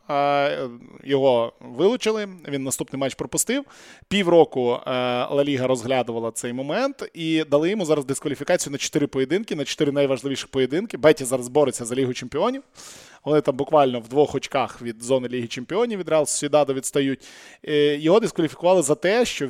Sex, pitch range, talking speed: male, 135-160 Hz, 150 wpm